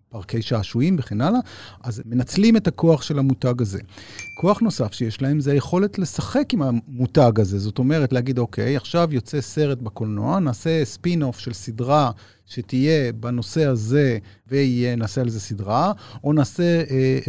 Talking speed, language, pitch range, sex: 150 wpm, Hebrew, 110-150 Hz, male